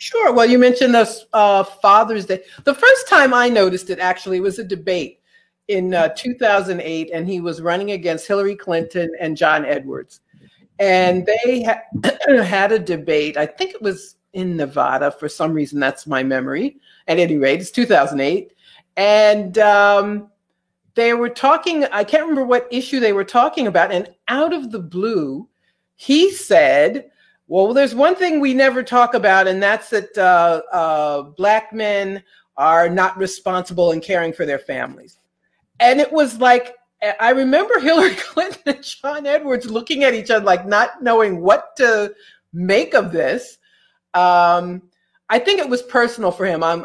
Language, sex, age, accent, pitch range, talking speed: English, female, 50-69, American, 170-245 Hz, 165 wpm